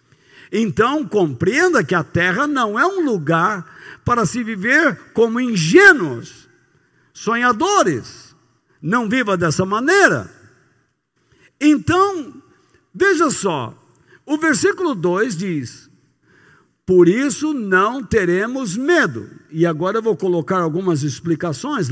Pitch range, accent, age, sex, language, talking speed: 180-300 Hz, Brazilian, 60-79, male, Portuguese, 105 wpm